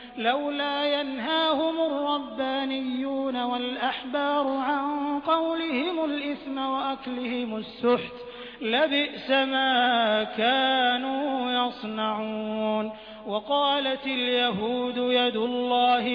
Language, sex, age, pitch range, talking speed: Hindi, male, 30-49, 245-290 Hz, 65 wpm